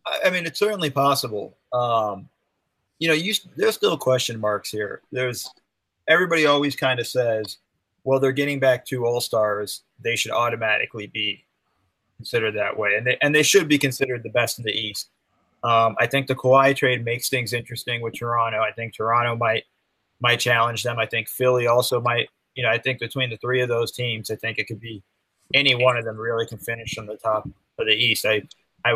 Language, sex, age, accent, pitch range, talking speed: English, male, 30-49, American, 115-135 Hz, 205 wpm